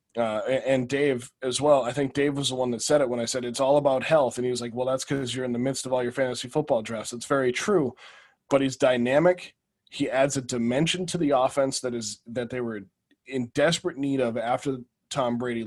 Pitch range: 120-145 Hz